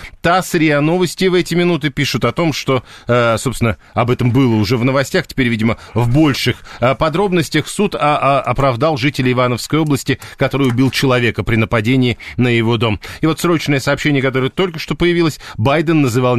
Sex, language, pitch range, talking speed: male, Russian, 125-155 Hz, 165 wpm